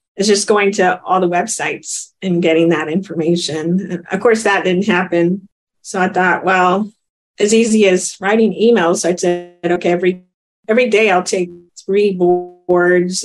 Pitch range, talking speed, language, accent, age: 175-200 Hz, 170 wpm, English, American, 40-59